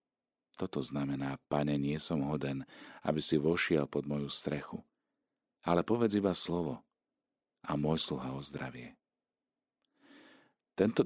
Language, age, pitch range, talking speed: Slovak, 50-69, 70-85 Hz, 120 wpm